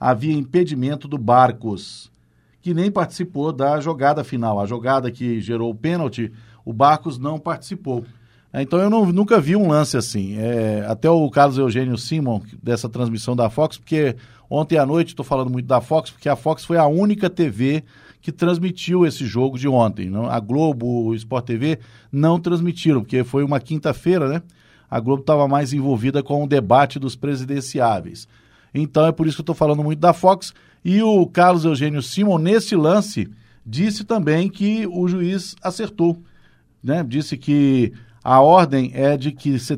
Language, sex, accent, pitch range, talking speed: Portuguese, male, Brazilian, 130-180 Hz, 170 wpm